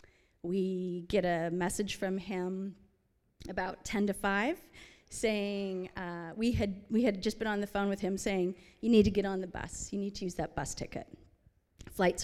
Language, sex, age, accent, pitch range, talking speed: English, female, 30-49, American, 175-210 Hz, 190 wpm